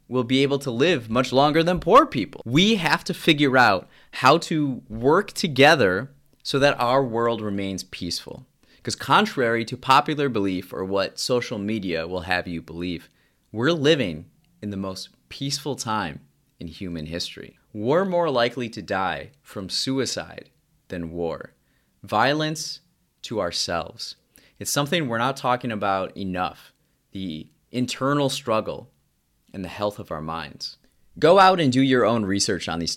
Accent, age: American, 30-49